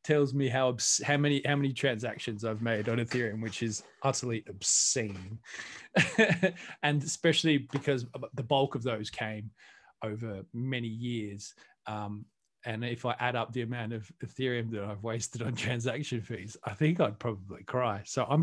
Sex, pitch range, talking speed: male, 115-145 Hz, 165 wpm